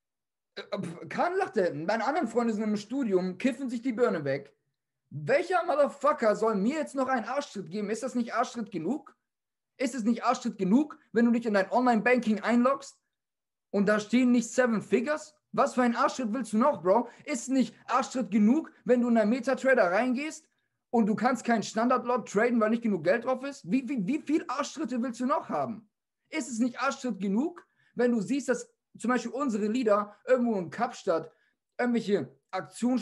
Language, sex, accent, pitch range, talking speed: German, male, German, 205-260 Hz, 190 wpm